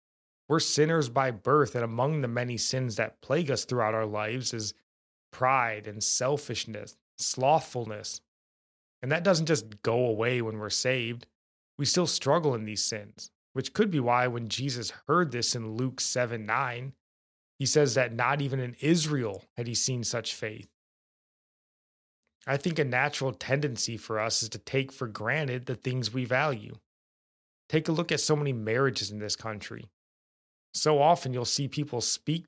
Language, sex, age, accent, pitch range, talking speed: English, male, 20-39, American, 110-135 Hz, 165 wpm